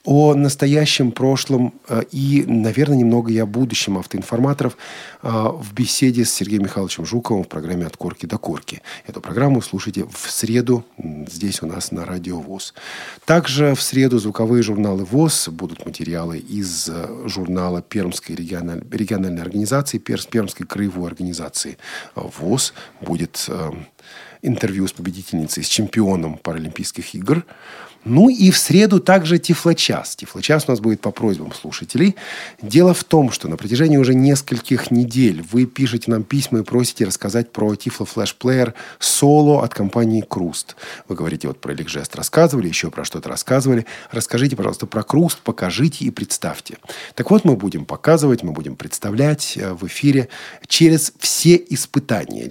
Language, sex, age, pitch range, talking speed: Russian, male, 40-59, 95-135 Hz, 145 wpm